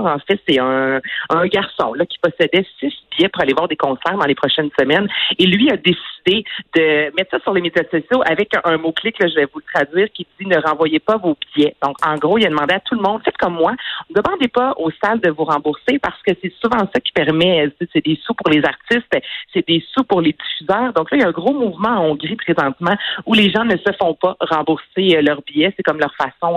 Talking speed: 255 wpm